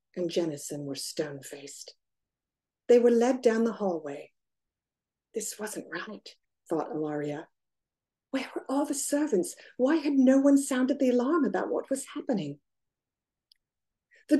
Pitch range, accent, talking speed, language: 170-235 Hz, American, 135 wpm, English